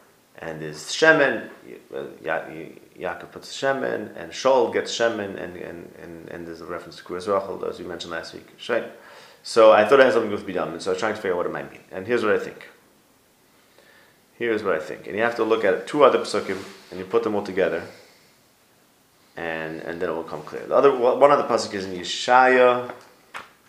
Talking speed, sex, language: 220 wpm, male, English